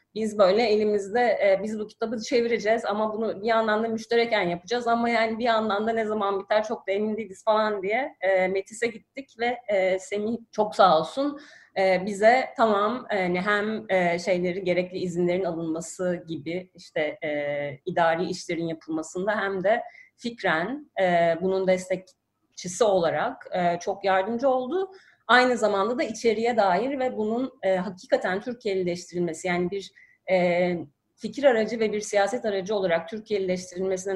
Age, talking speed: 30-49, 135 wpm